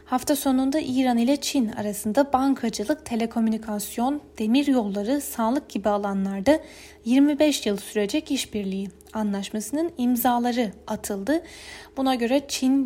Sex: female